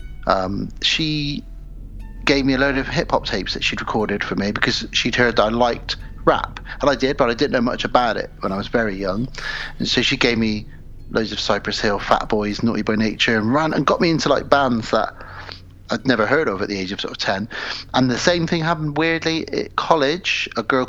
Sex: male